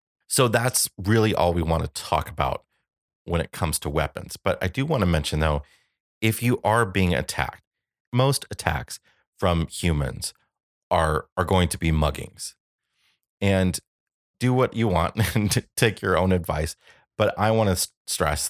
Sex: male